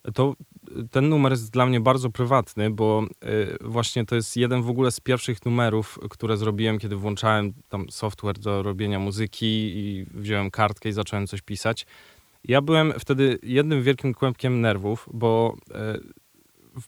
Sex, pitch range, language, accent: male, 110-130 Hz, Polish, native